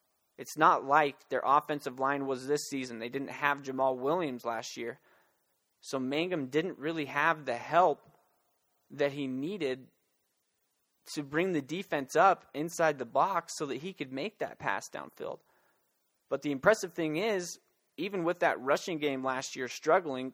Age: 30-49